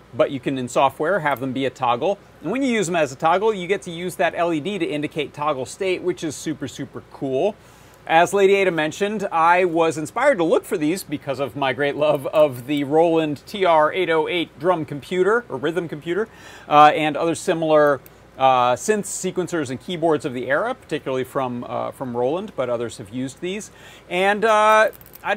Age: 40-59